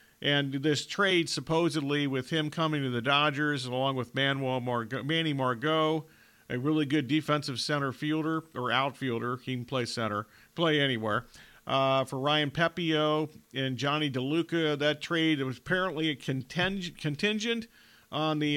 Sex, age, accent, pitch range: male, 50-69, American, 125-155 Hz